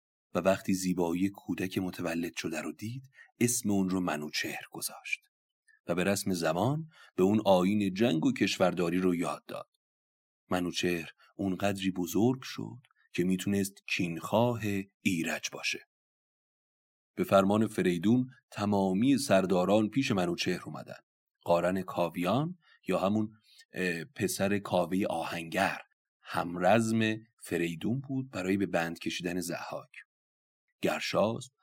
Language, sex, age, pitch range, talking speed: Persian, male, 30-49, 90-115 Hz, 115 wpm